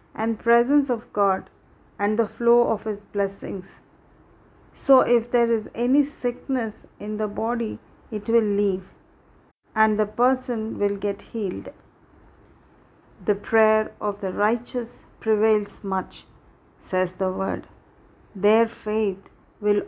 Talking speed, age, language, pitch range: 125 wpm, 40-59, English, 200-235 Hz